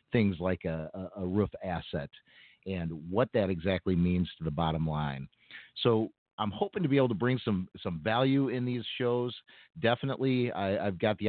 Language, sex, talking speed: English, male, 175 wpm